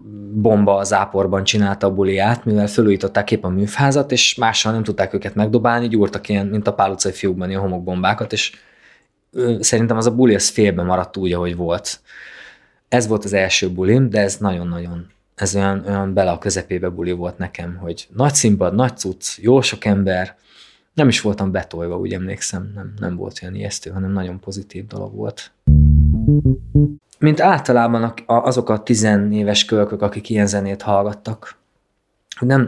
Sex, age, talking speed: male, 20-39, 165 wpm